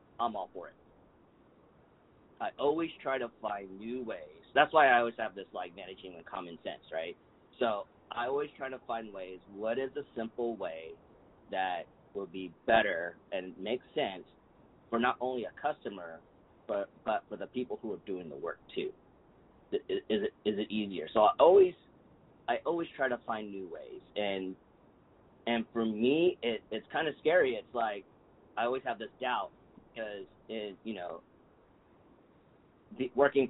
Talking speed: 170 wpm